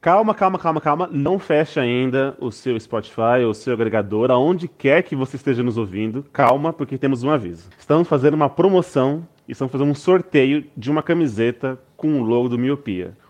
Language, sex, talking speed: Portuguese, male, 195 wpm